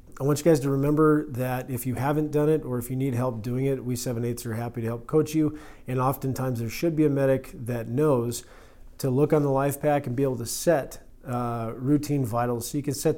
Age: 40-59